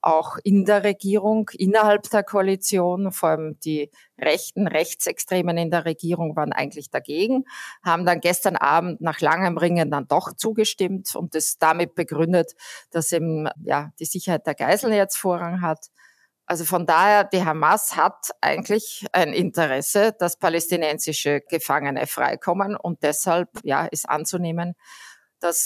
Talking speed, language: 145 wpm, German